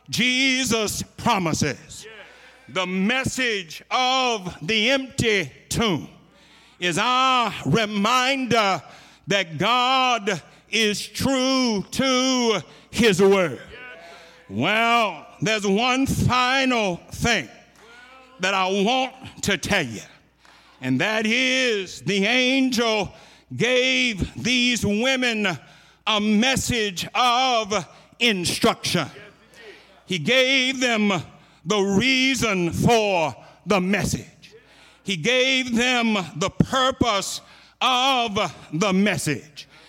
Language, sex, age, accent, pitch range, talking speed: English, male, 60-79, American, 185-250 Hz, 85 wpm